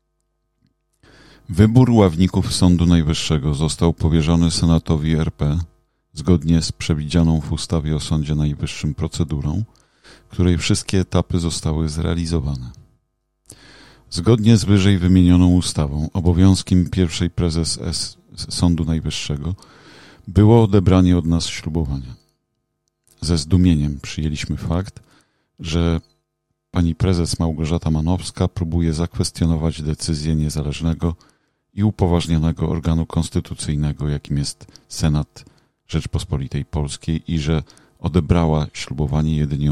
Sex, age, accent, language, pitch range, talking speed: male, 40-59, native, Polish, 75-90 Hz, 95 wpm